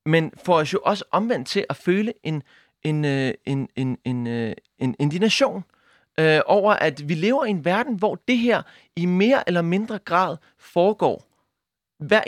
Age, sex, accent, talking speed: 30-49, male, native, 170 wpm